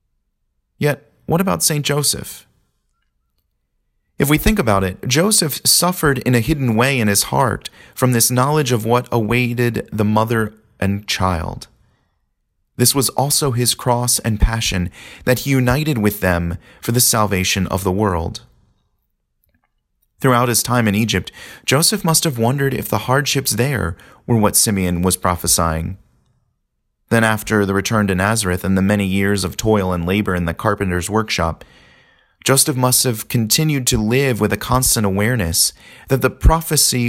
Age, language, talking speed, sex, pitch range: 30-49, English, 155 wpm, male, 95-125 Hz